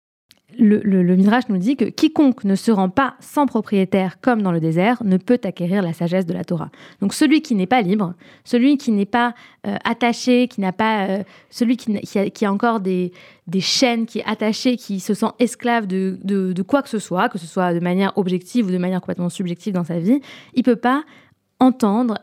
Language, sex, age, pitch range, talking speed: French, female, 20-39, 185-240 Hz, 230 wpm